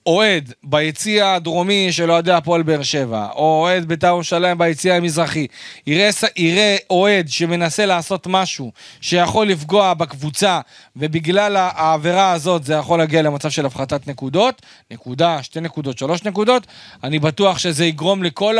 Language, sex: Hebrew, male